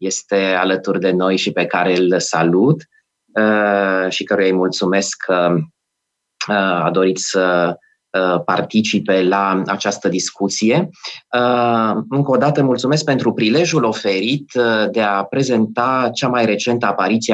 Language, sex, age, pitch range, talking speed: Romanian, male, 20-39, 95-115 Hz, 120 wpm